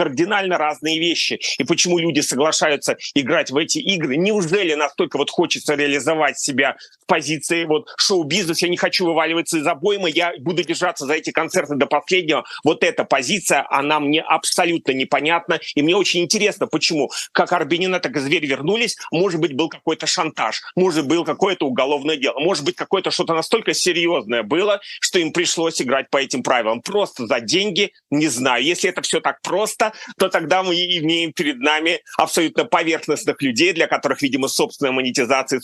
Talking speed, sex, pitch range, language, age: 170 wpm, male, 150-180 Hz, Russian, 30-49